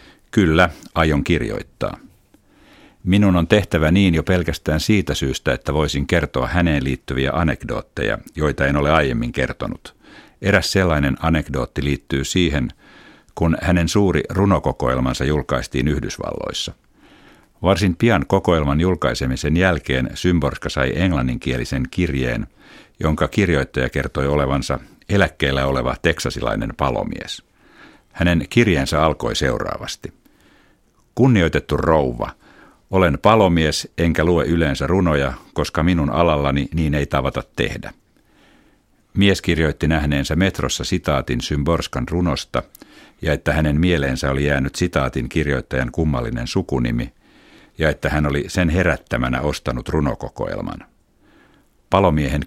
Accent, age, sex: native, 50-69, male